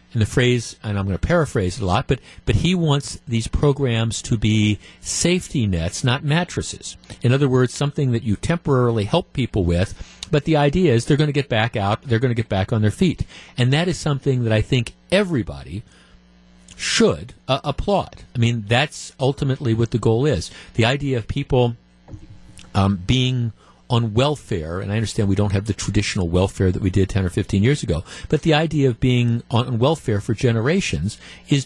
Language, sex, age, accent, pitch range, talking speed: English, male, 50-69, American, 100-140 Hz, 200 wpm